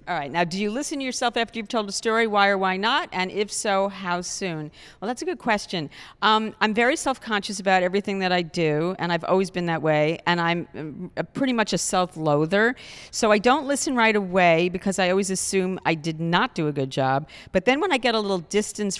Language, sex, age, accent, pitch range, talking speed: English, female, 50-69, American, 160-195 Hz, 235 wpm